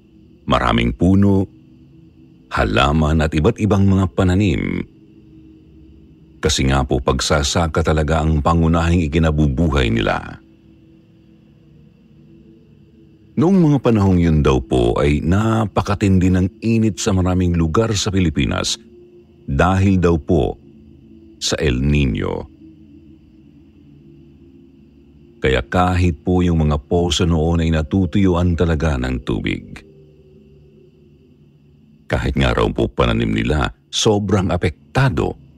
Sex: male